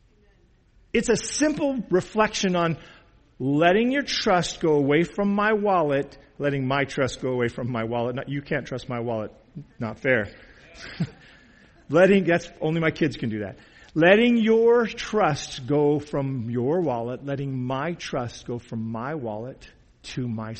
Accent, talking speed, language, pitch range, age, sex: American, 150 wpm, English, 120-180 Hz, 50-69, male